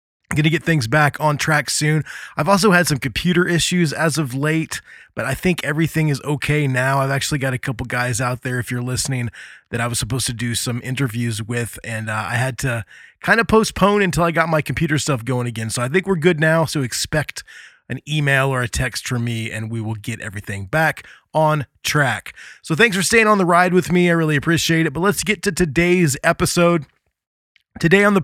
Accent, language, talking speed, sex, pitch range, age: American, English, 225 wpm, male, 130-175 Hz, 20-39